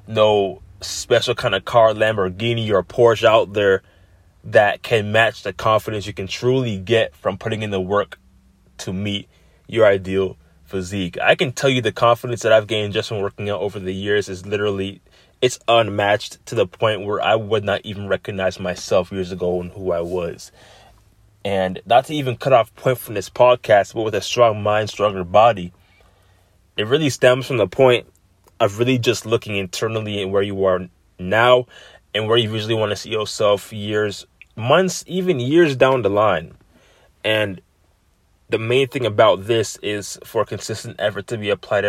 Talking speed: 180 wpm